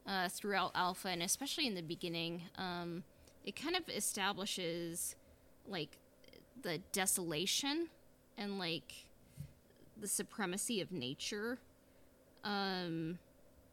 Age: 10-29